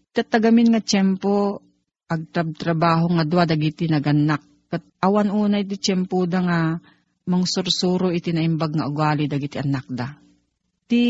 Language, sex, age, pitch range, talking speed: Filipino, female, 40-59, 165-205 Hz, 130 wpm